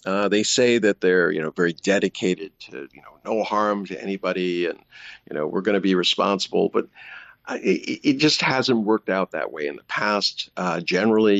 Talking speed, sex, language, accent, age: 200 wpm, male, English, American, 50-69